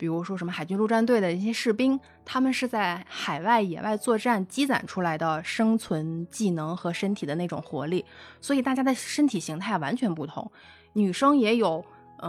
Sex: female